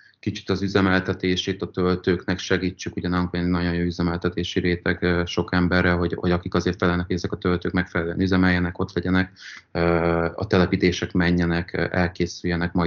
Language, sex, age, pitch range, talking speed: Hungarian, male, 30-49, 85-95 Hz, 145 wpm